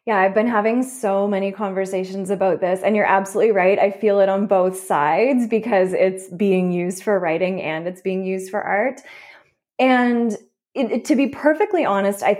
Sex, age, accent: female, 20-39, American